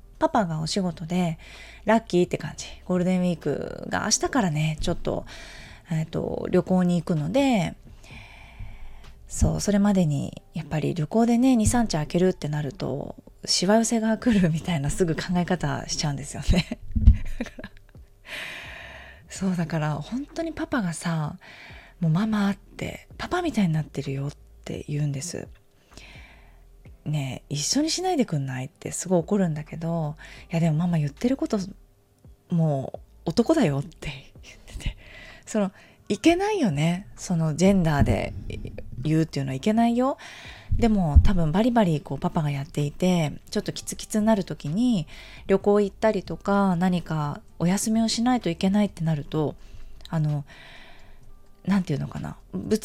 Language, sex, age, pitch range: Japanese, female, 20-39, 150-215 Hz